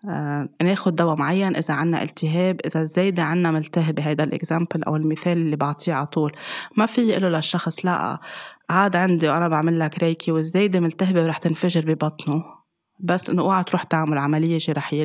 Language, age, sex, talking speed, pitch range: Arabic, 20-39, female, 165 wpm, 160-180 Hz